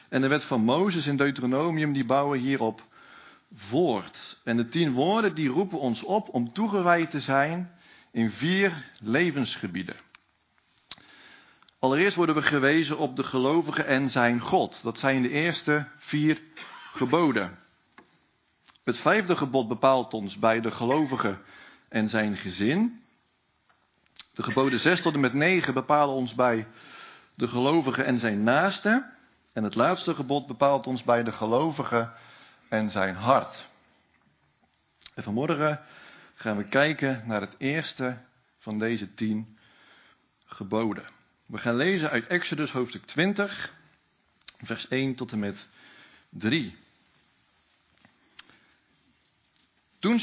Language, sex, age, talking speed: Dutch, male, 50-69, 125 wpm